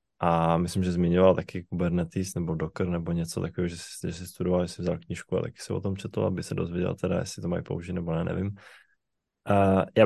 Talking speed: 220 wpm